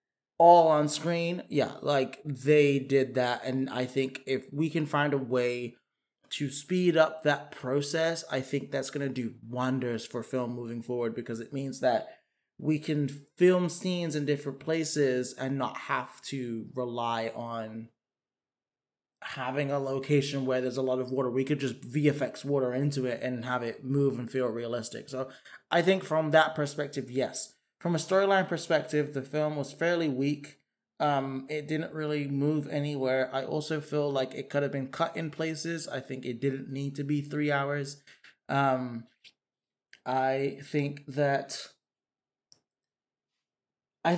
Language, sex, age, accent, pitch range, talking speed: English, male, 20-39, American, 130-160 Hz, 165 wpm